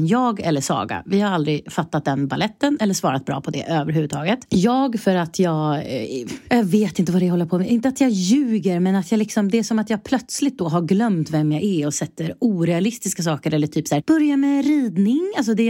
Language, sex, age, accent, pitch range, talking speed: English, female, 30-49, Swedish, 160-240 Hz, 240 wpm